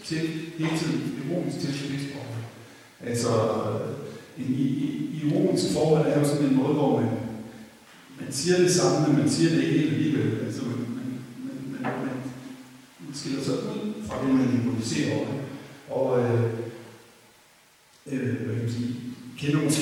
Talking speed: 130 wpm